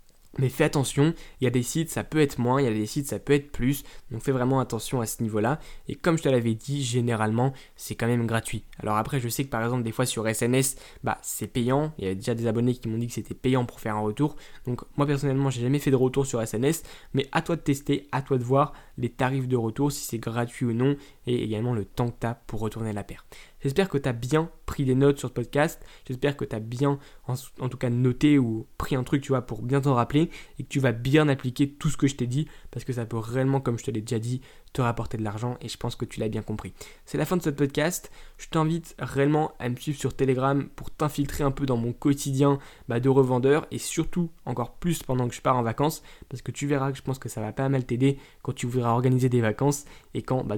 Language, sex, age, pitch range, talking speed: French, male, 20-39, 115-140 Hz, 270 wpm